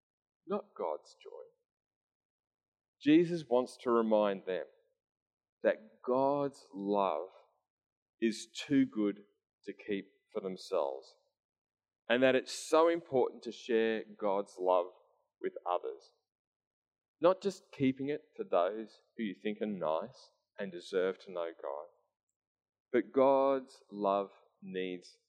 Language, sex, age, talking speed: English, male, 30-49, 115 wpm